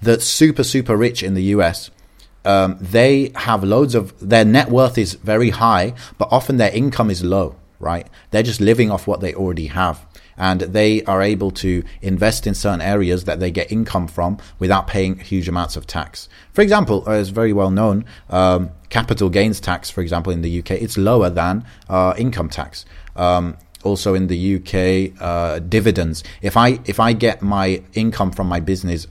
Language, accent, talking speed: English, British, 190 wpm